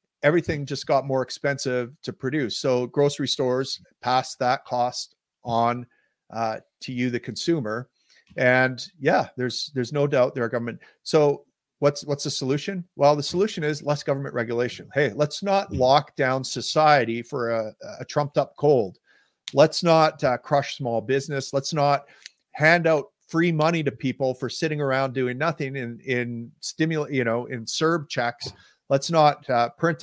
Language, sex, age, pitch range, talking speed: English, male, 50-69, 125-155 Hz, 165 wpm